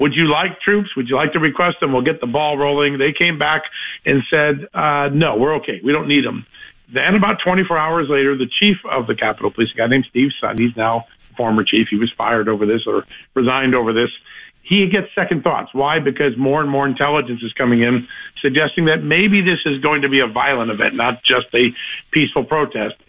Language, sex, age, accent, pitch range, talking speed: English, male, 50-69, American, 130-165 Hz, 225 wpm